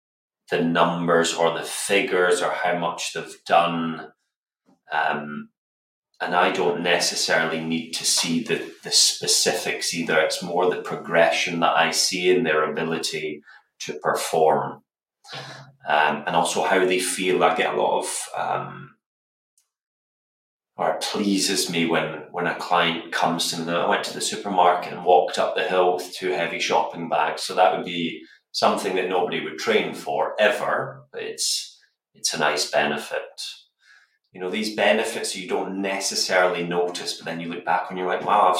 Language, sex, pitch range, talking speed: English, male, 80-90 Hz, 165 wpm